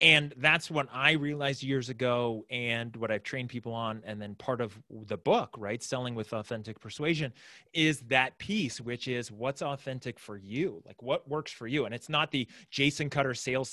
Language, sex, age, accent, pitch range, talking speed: English, male, 30-49, American, 115-145 Hz, 195 wpm